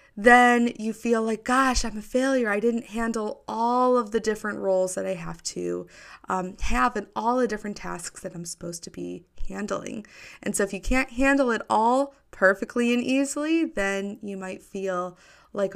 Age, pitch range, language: 20-39, 205-280 Hz, English